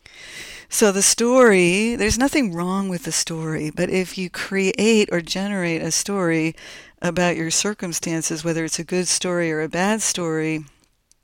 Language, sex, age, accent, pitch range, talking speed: English, female, 60-79, American, 165-200 Hz, 155 wpm